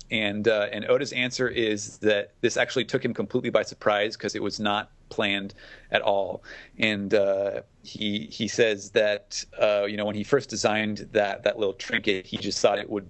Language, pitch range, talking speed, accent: English, 100-110 Hz, 195 wpm, American